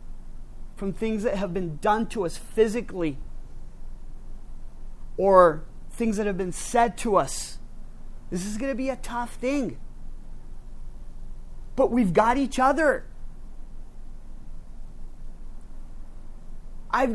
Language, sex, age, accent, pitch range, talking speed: English, male, 30-49, American, 195-250 Hz, 110 wpm